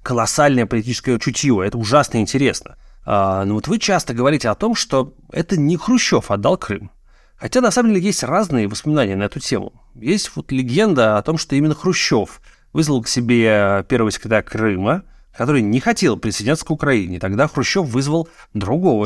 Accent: native